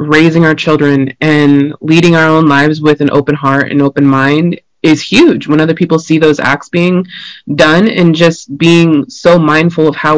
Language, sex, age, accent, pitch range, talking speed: English, female, 20-39, American, 145-170 Hz, 190 wpm